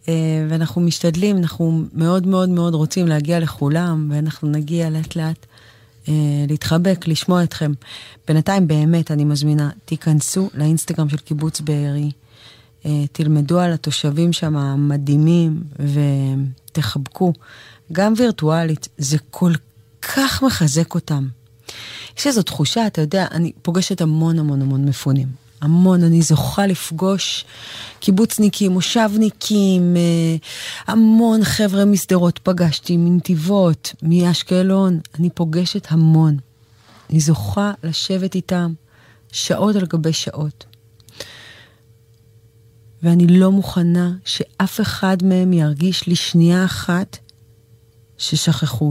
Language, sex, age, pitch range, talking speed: English, female, 30-49, 130-175 Hz, 105 wpm